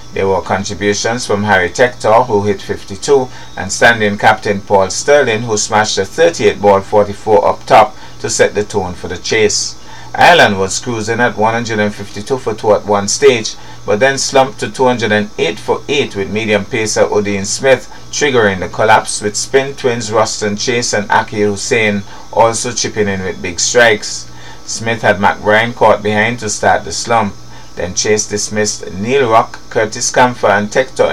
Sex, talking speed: male, 160 wpm